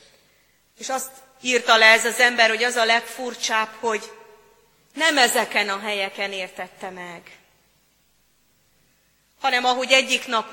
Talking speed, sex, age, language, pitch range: 125 wpm, female, 30-49, Hungarian, 200-255 Hz